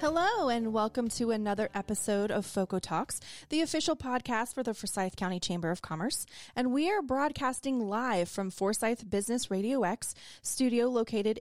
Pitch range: 190-255 Hz